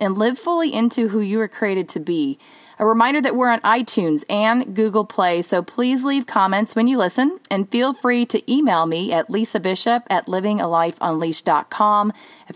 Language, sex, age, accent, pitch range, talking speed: English, female, 30-49, American, 170-230 Hz, 170 wpm